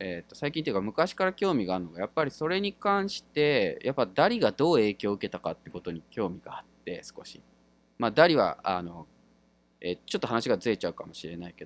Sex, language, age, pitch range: male, Japanese, 20-39, 85-145 Hz